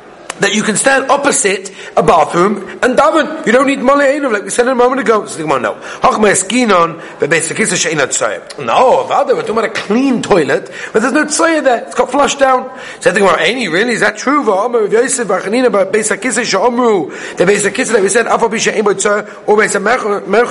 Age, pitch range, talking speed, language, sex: 30-49, 195-255 Hz, 125 wpm, English, male